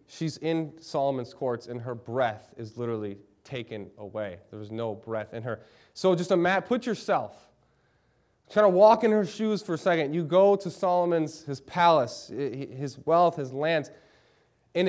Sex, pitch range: male, 140-210 Hz